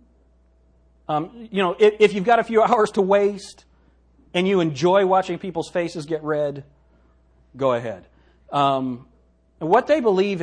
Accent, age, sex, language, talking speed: American, 40-59, male, English, 145 wpm